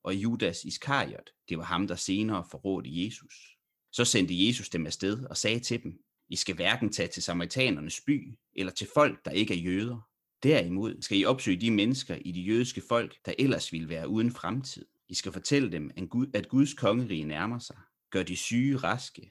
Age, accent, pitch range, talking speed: 30-49, native, 95-125 Hz, 195 wpm